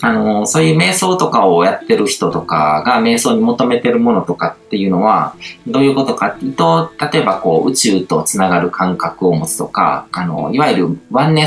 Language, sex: Japanese, male